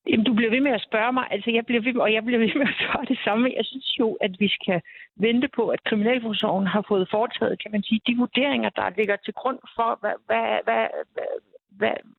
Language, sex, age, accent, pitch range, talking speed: Danish, female, 60-79, native, 195-235 Hz, 230 wpm